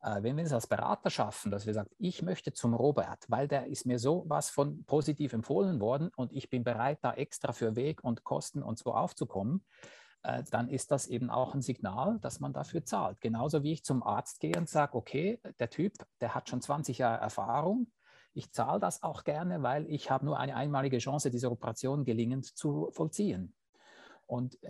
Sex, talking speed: male, 200 wpm